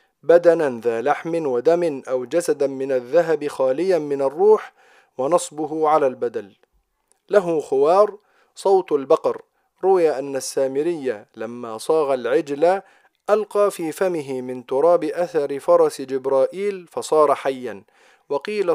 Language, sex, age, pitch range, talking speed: Arabic, male, 40-59, 145-205 Hz, 110 wpm